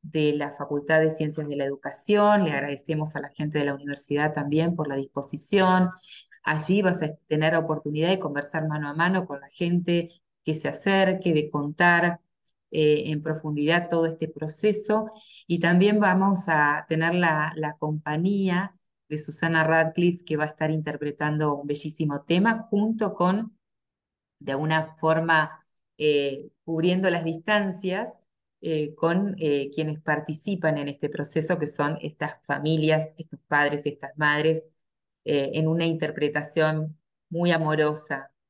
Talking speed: 150 wpm